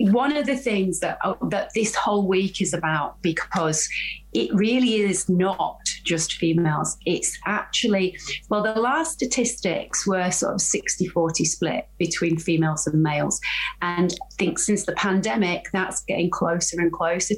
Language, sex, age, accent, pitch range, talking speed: English, female, 30-49, British, 165-200 Hz, 150 wpm